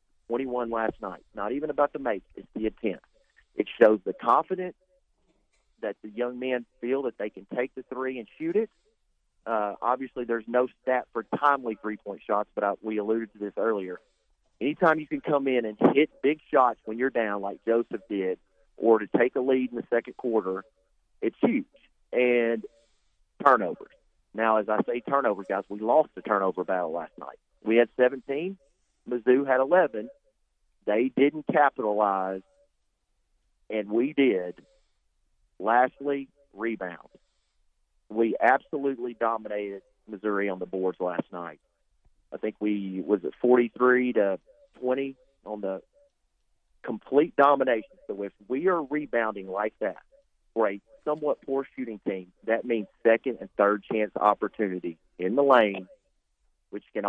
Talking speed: 155 wpm